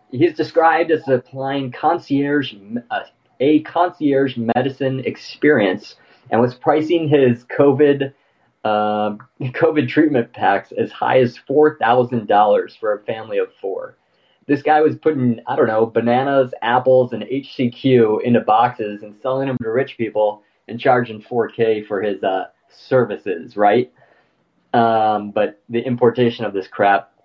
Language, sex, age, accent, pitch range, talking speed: English, male, 20-39, American, 115-165 Hz, 150 wpm